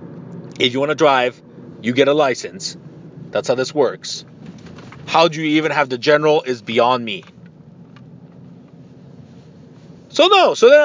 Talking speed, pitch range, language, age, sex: 150 wpm, 140-190 Hz, English, 30-49, male